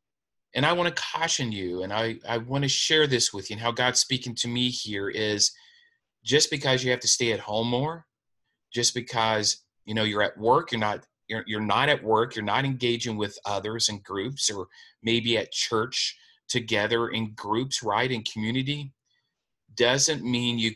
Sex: male